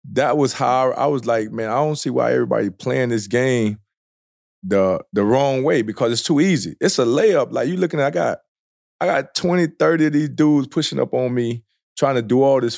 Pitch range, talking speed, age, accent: 100-125 Hz, 225 wpm, 20-39, American